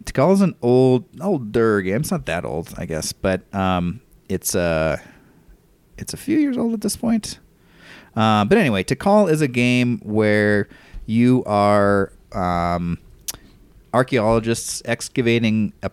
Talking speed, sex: 145 wpm, male